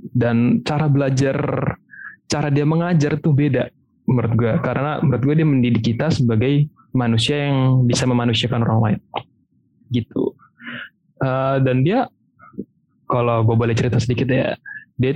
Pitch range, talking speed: 115-140 Hz, 135 wpm